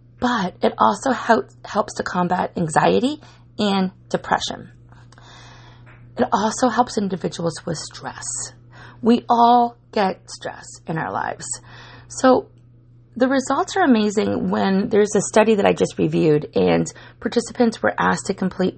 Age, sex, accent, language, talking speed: 30-49, female, American, English, 130 wpm